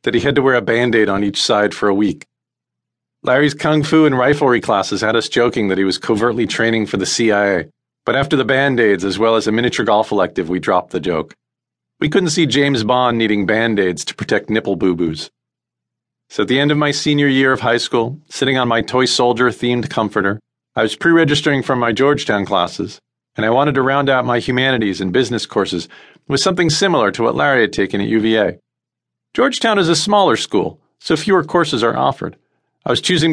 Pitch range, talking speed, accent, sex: 105-140 Hz, 205 wpm, American, male